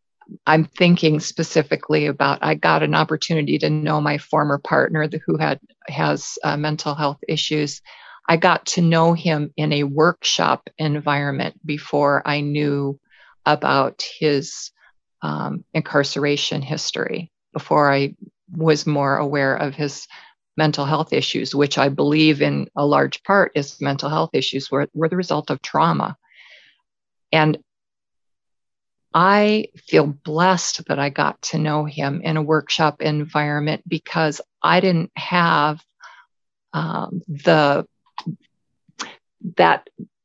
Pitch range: 145-175 Hz